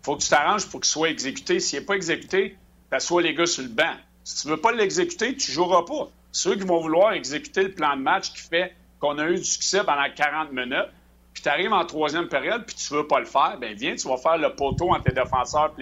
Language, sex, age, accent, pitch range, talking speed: French, male, 50-69, Canadian, 140-185 Hz, 260 wpm